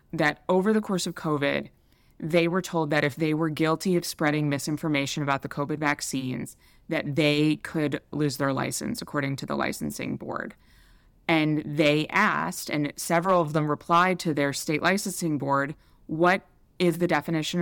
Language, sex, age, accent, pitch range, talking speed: English, female, 20-39, American, 140-170 Hz, 165 wpm